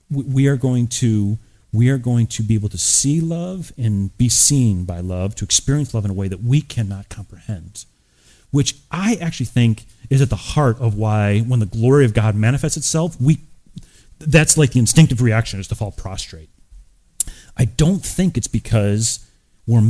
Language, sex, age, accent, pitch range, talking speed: English, male, 30-49, American, 100-135 Hz, 185 wpm